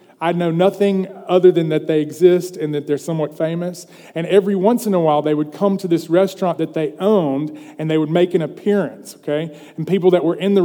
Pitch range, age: 145-180 Hz, 30-49